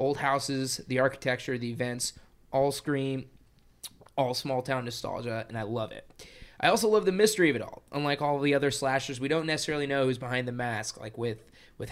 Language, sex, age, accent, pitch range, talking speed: English, male, 20-39, American, 120-145 Hz, 195 wpm